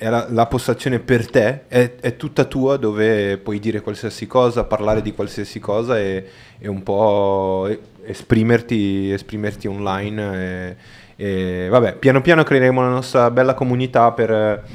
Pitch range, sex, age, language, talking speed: 100-120 Hz, male, 20-39, Italian, 145 wpm